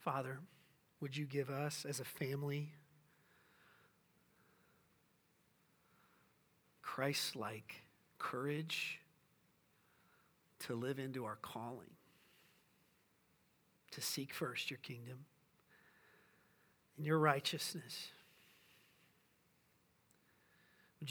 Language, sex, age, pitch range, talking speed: English, male, 40-59, 130-155 Hz, 70 wpm